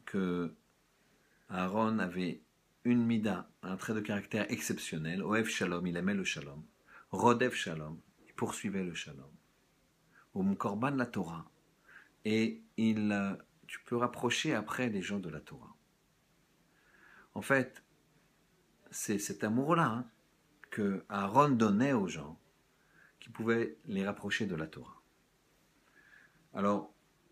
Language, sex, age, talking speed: French, male, 50-69, 125 wpm